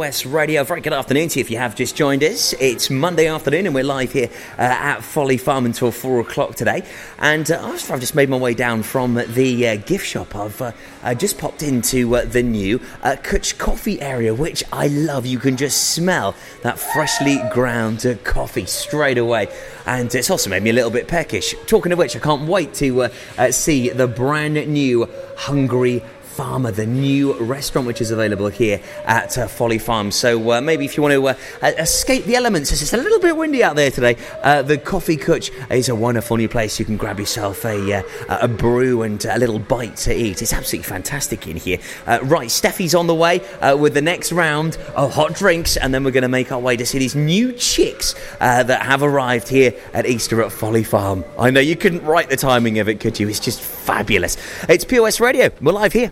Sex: male